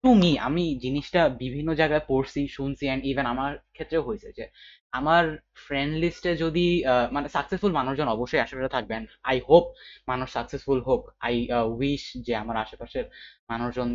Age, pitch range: 20-39, 125-160 Hz